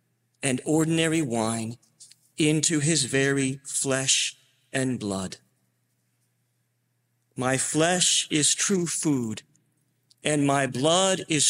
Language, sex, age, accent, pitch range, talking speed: English, male, 40-59, American, 130-170 Hz, 95 wpm